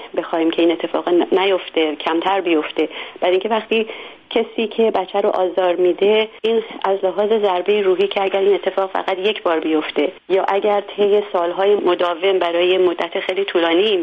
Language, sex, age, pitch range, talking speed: English, female, 40-59, 175-205 Hz, 170 wpm